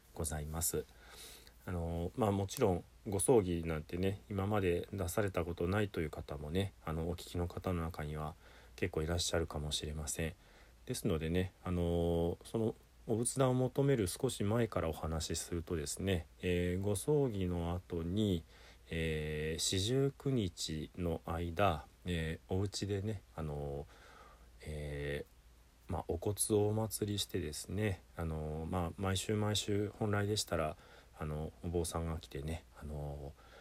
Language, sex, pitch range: Japanese, male, 80-100 Hz